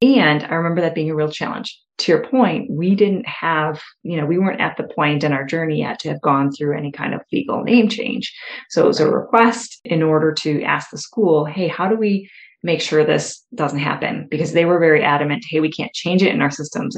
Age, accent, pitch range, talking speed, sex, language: 30-49, American, 150-190 Hz, 240 wpm, female, English